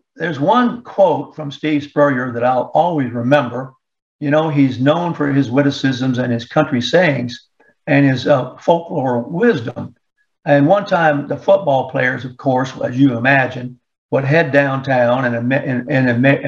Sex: male